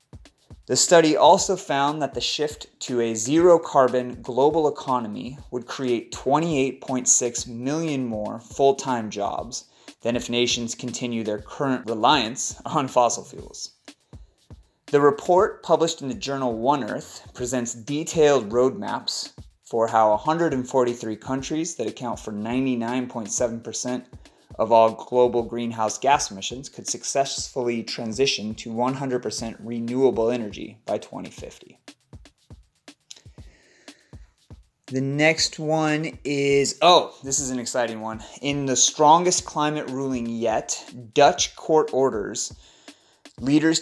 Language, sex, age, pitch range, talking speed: English, male, 30-49, 115-145 Hz, 115 wpm